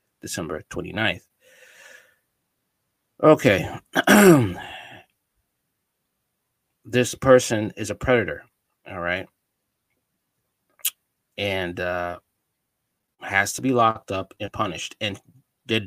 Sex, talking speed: male, 80 wpm